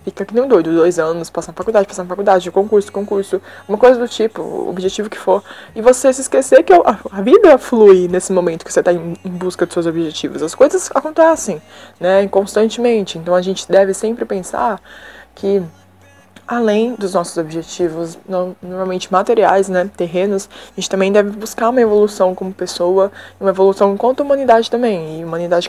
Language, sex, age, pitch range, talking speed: Portuguese, female, 20-39, 180-230 Hz, 175 wpm